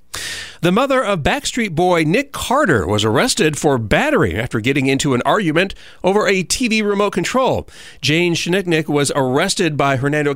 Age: 40-59